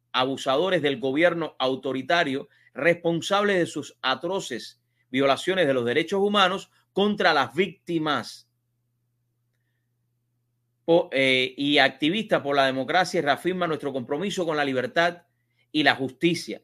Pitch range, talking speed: 120-155 Hz, 110 wpm